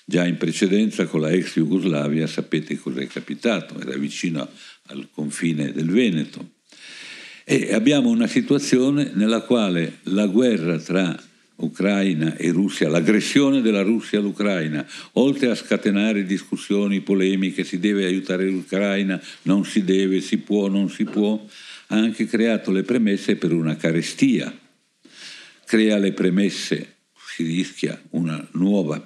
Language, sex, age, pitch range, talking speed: Italian, male, 60-79, 85-105 Hz, 135 wpm